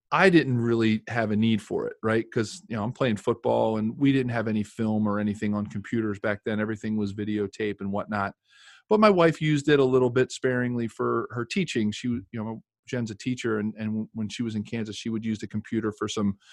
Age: 40-59